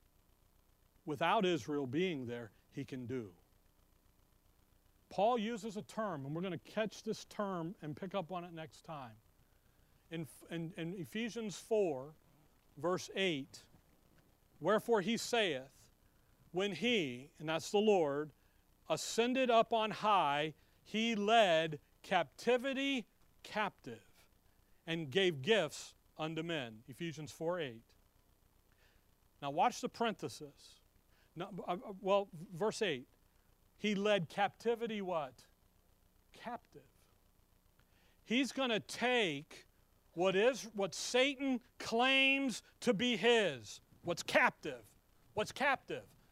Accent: American